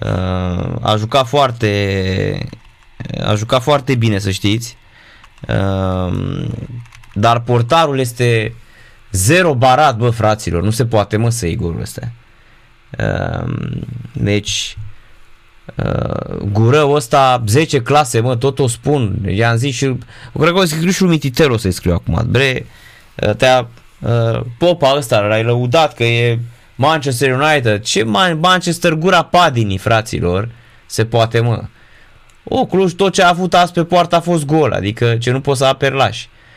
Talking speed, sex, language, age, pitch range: 145 wpm, male, Romanian, 20-39, 110-150 Hz